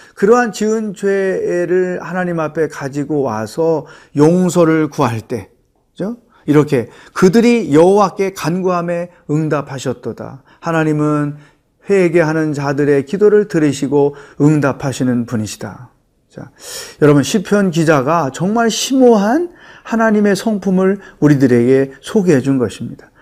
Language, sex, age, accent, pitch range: Korean, male, 40-59, native, 140-185 Hz